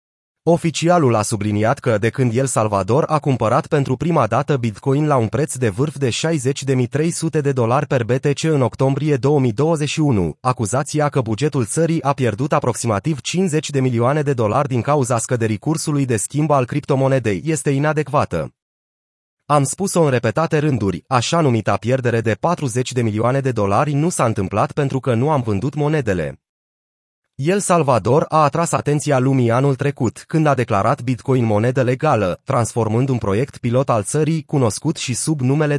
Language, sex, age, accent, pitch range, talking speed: Romanian, male, 30-49, native, 115-150 Hz, 165 wpm